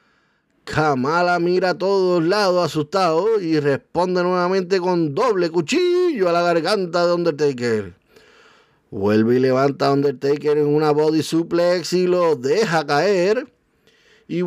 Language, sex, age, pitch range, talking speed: Spanish, male, 30-49, 160-210 Hz, 130 wpm